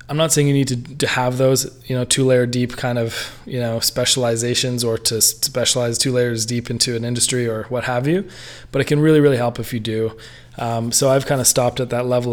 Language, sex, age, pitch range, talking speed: English, male, 20-39, 120-130 Hz, 245 wpm